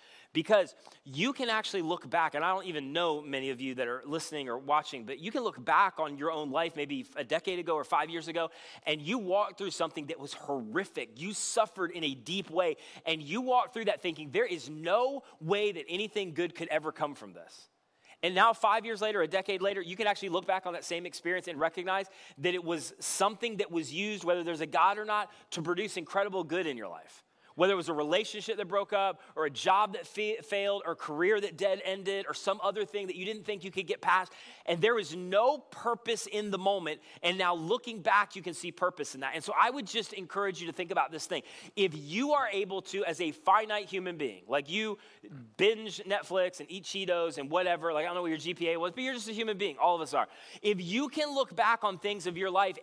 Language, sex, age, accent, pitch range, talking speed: English, male, 30-49, American, 165-210 Hz, 245 wpm